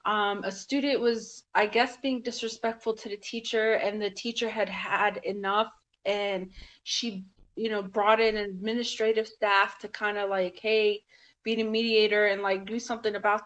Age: 20-39